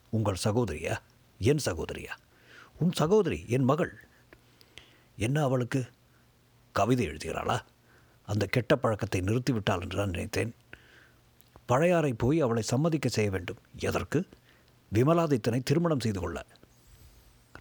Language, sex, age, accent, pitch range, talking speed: Tamil, male, 50-69, native, 110-140 Hz, 100 wpm